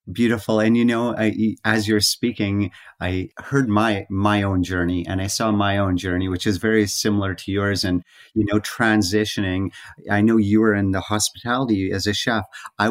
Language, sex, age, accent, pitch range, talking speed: English, male, 30-49, American, 95-110 Hz, 185 wpm